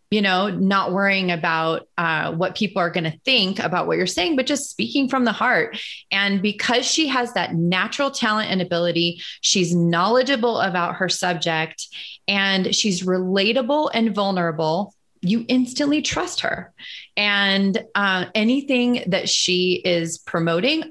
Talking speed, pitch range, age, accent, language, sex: 150 wpm, 180-235 Hz, 30-49, American, English, female